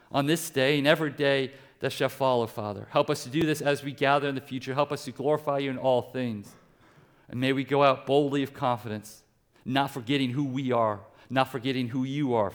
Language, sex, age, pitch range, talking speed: English, male, 40-59, 115-140 Hz, 225 wpm